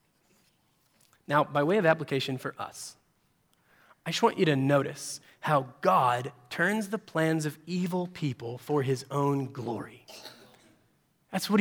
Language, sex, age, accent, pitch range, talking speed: English, male, 30-49, American, 145-205 Hz, 140 wpm